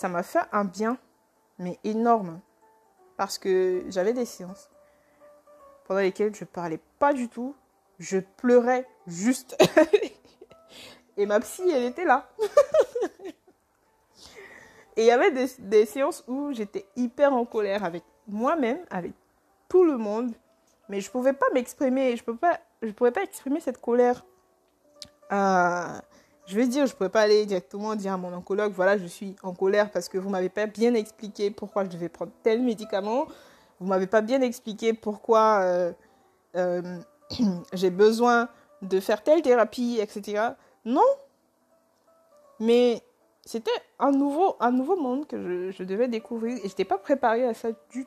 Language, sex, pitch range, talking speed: French, female, 195-280 Hz, 160 wpm